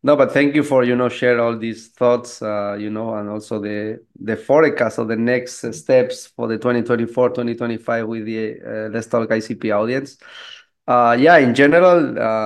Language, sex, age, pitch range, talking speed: English, male, 30-49, 115-135 Hz, 185 wpm